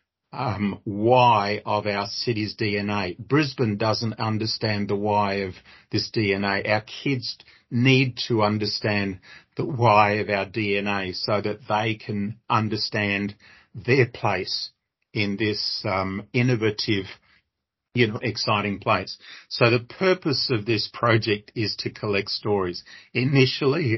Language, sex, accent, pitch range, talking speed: English, male, Australian, 100-120 Hz, 125 wpm